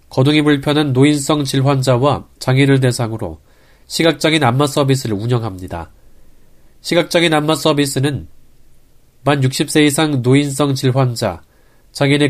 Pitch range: 110-150 Hz